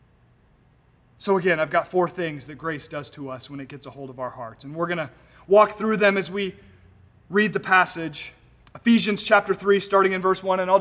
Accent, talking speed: American, 220 wpm